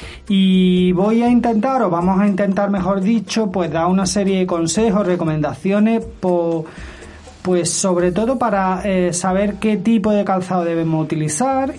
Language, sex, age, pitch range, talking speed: Spanish, male, 30-49, 160-195 Hz, 150 wpm